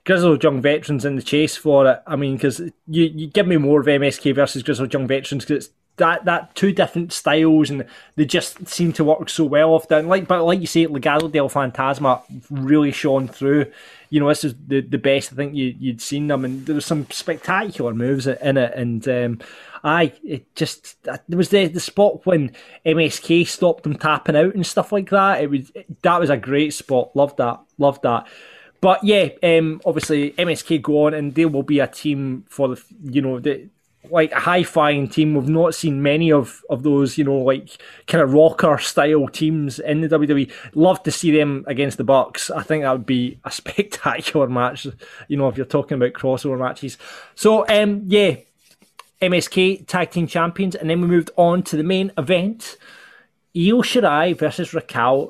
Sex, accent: male, British